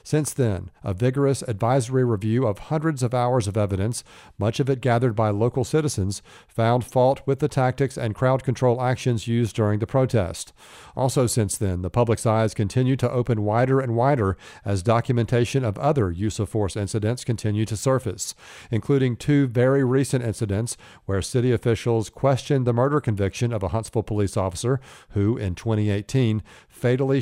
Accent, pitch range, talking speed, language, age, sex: American, 110-130 Hz, 165 wpm, English, 50-69, male